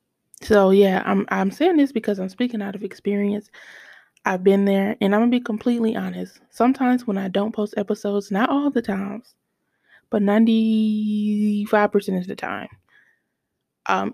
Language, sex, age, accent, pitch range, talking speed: English, female, 20-39, American, 195-225 Hz, 160 wpm